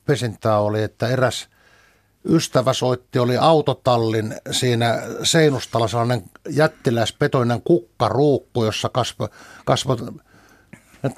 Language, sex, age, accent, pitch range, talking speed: Finnish, male, 60-79, native, 115-145 Hz, 90 wpm